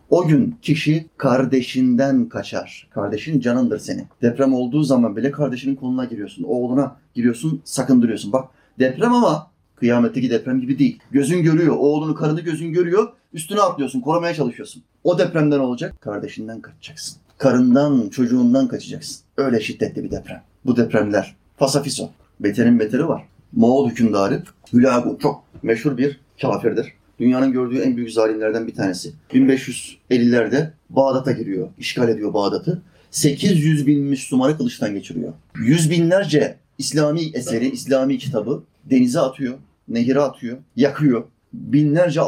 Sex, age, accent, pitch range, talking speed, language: male, 30-49, native, 125-155 Hz, 130 wpm, Turkish